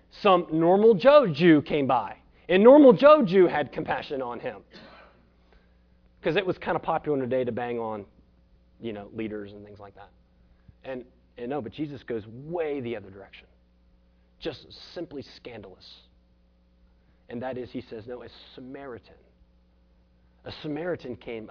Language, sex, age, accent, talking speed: English, male, 30-49, American, 160 wpm